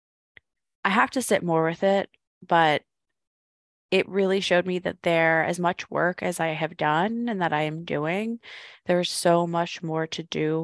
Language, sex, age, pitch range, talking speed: English, female, 20-39, 160-185 Hz, 180 wpm